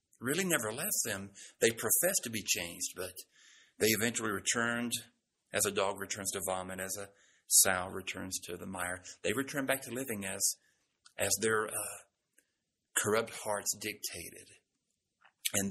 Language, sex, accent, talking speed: English, male, American, 150 wpm